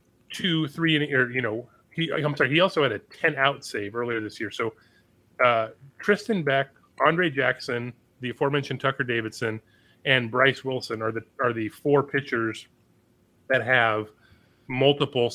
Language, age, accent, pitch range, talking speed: English, 30-49, American, 115-150 Hz, 160 wpm